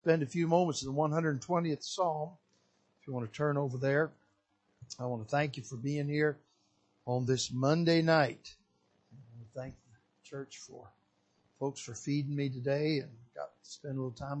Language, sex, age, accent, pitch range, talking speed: English, male, 60-79, American, 125-145 Hz, 200 wpm